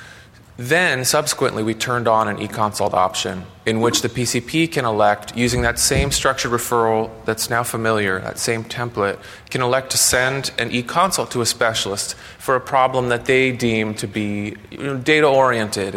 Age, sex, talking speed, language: 20-39, male, 160 wpm, English